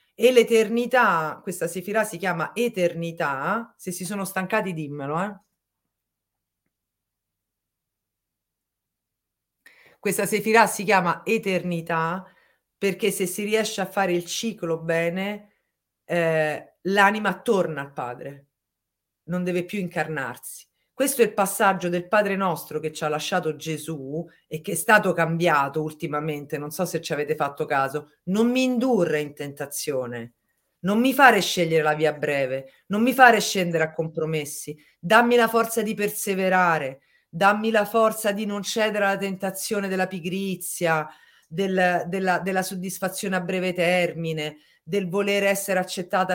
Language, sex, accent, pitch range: Italian, female, native, 155-205 Hz